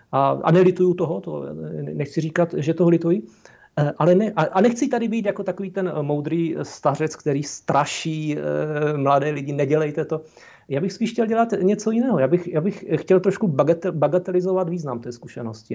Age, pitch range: 40-59, 135-175 Hz